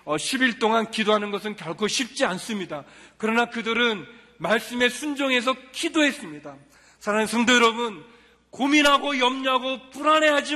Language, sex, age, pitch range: Korean, male, 40-59, 200-270 Hz